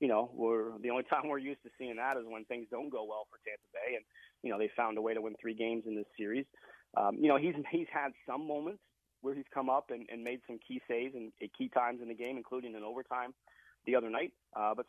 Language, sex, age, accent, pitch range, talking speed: English, male, 30-49, American, 115-135 Hz, 265 wpm